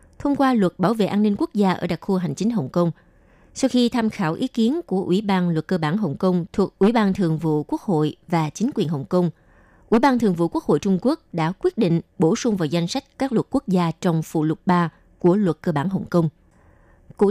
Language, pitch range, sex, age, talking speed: Vietnamese, 170-225 Hz, female, 20-39, 255 wpm